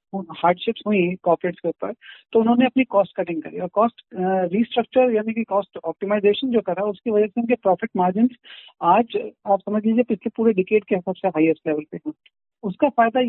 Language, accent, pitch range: Hindi, native, 185-225 Hz